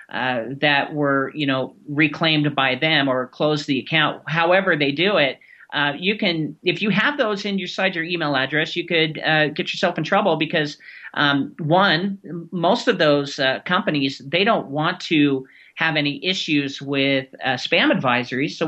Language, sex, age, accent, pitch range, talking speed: English, male, 40-59, American, 140-165 Hz, 175 wpm